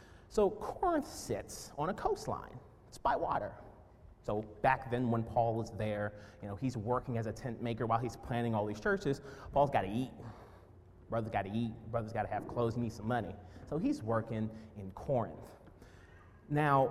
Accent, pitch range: American, 115-165 Hz